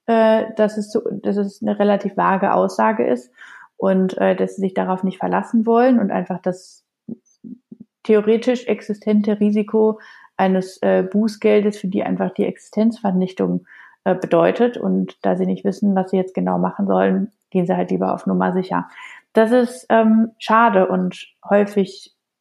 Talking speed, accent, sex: 155 wpm, German, female